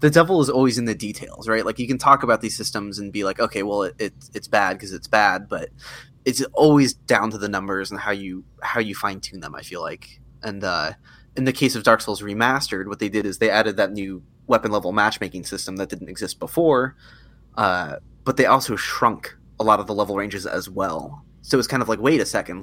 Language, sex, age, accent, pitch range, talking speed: English, male, 20-39, American, 100-125 Hz, 240 wpm